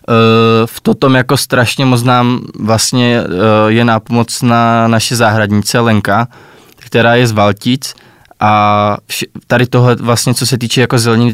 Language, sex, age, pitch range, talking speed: Czech, male, 20-39, 110-125 Hz, 150 wpm